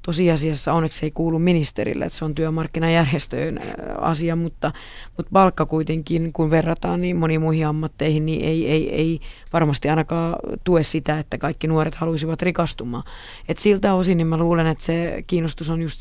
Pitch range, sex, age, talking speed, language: 155-170 Hz, female, 30-49, 165 wpm, Finnish